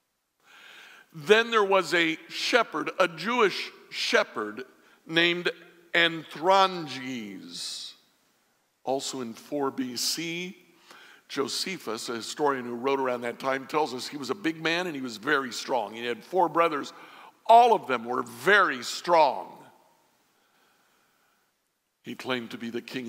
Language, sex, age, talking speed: English, male, 60-79, 130 wpm